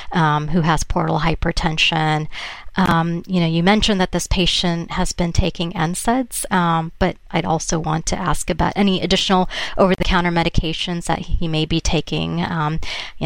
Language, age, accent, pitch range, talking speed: English, 30-49, American, 160-180 Hz, 165 wpm